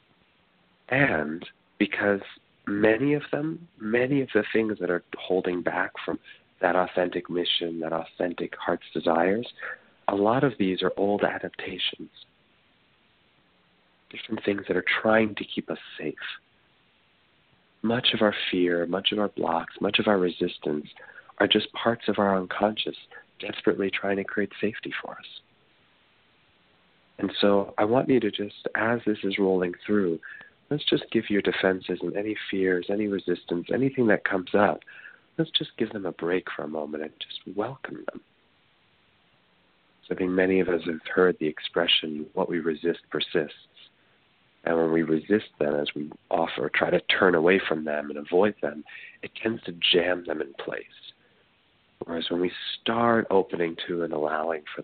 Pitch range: 85-105 Hz